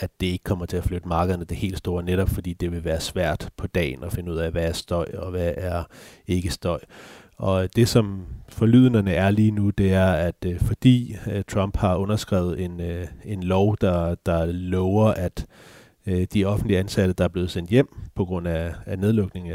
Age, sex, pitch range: 30-49, male, 85-100 Hz